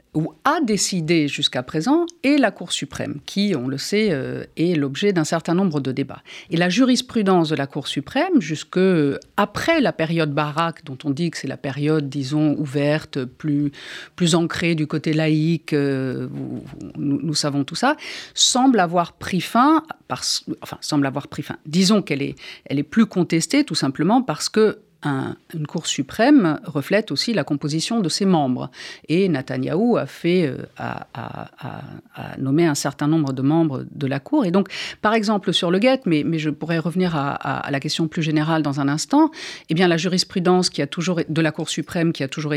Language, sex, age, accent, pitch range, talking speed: French, female, 50-69, French, 150-195 Hz, 195 wpm